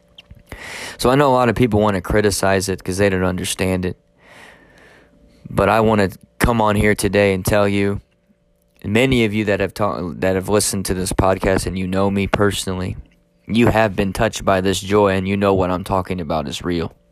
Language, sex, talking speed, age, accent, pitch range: English, male, 215 wpm, 20-39, American, 95-105 Hz